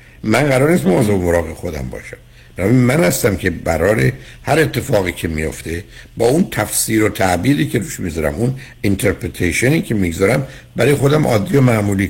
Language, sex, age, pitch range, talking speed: Persian, male, 60-79, 85-130 Hz, 160 wpm